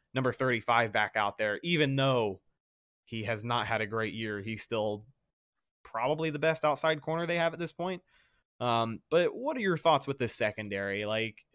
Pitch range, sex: 110-135 Hz, male